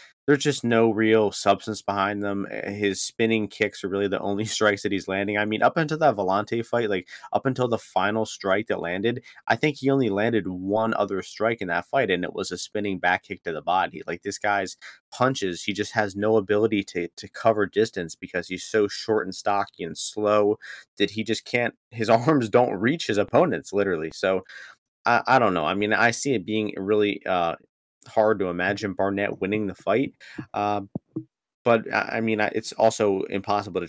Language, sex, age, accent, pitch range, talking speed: English, male, 30-49, American, 95-110 Hz, 200 wpm